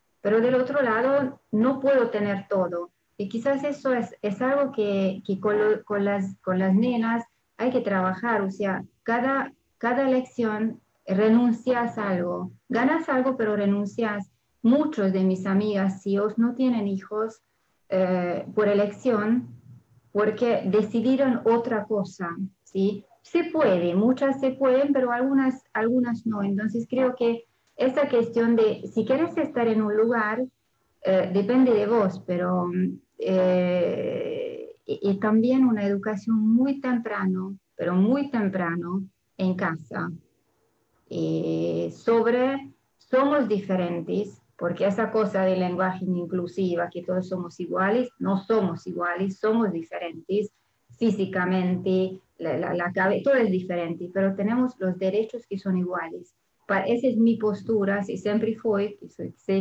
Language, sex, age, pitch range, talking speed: Spanish, female, 30-49, 185-235 Hz, 135 wpm